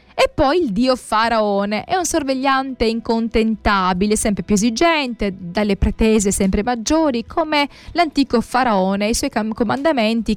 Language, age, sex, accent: Italian, 20-39, female, native